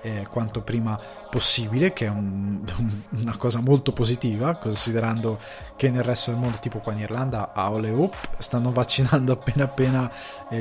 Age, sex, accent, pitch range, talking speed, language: 20-39, male, native, 110-130 Hz, 170 wpm, Italian